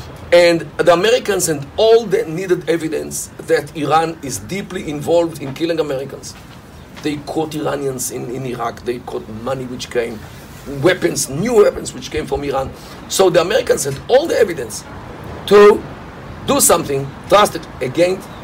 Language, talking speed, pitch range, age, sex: English, 150 wpm, 150-215 Hz, 50-69, male